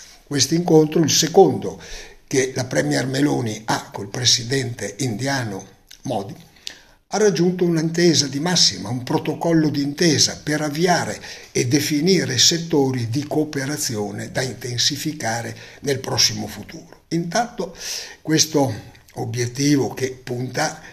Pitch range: 120-160 Hz